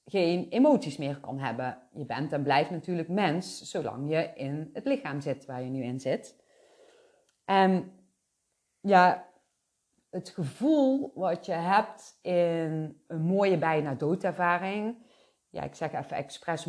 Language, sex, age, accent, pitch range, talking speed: Dutch, female, 30-49, Dutch, 150-185 Hz, 140 wpm